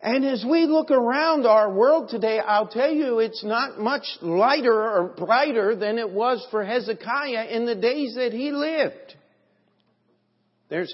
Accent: American